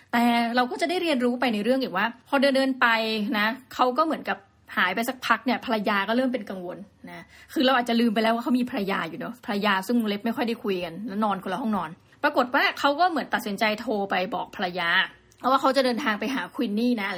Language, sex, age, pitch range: Thai, female, 20-39, 210-255 Hz